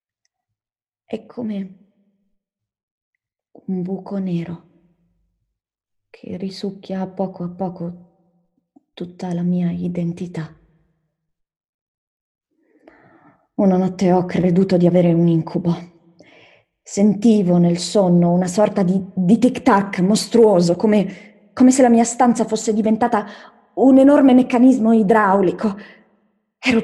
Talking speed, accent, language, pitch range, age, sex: 100 wpm, native, Italian, 175-215 Hz, 20-39, female